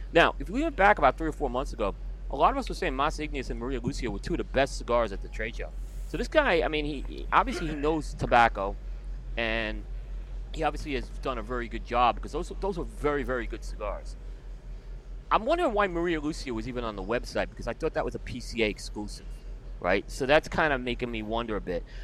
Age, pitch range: 30-49, 120-155 Hz